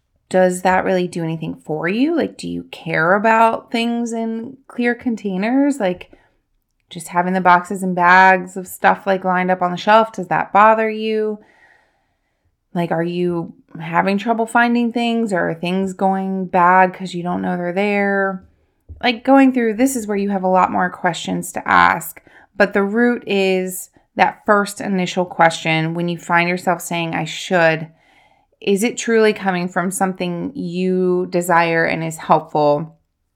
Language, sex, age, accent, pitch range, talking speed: English, female, 20-39, American, 170-215 Hz, 165 wpm